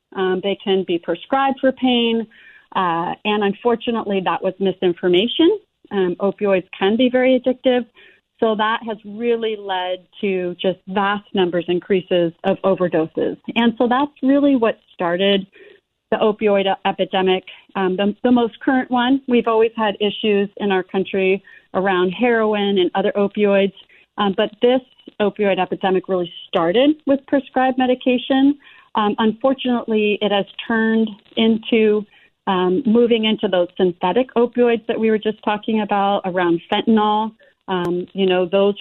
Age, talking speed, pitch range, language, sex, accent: 40-59, 140 wpm, 190-235 Hz, English, female, American